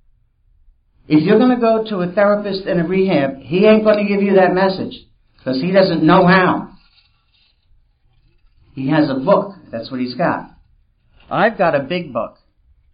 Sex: male